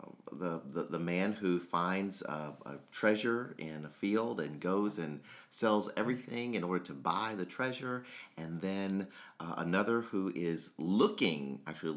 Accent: American